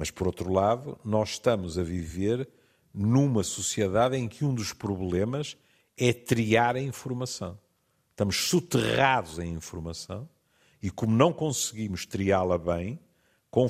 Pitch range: 95-125 Hz